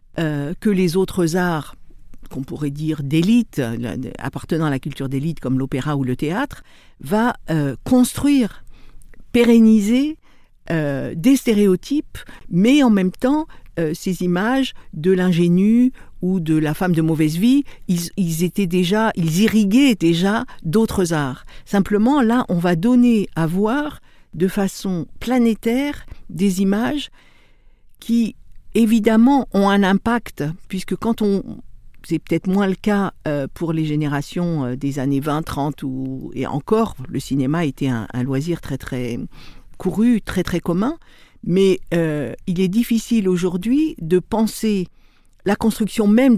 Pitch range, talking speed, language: 155-225 Hz, 140 wpm, French